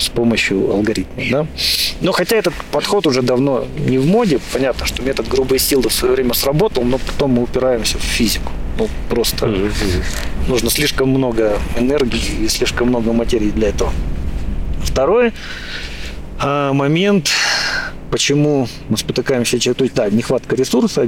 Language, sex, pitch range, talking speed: Russian, male, 105-140 Hz, 135 wpm